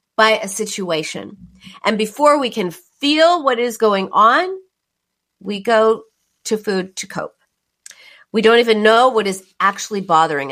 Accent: American